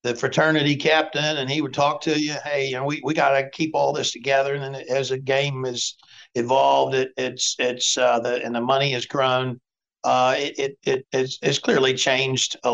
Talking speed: 210 wpm